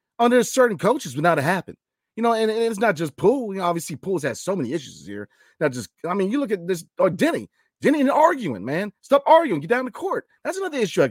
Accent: American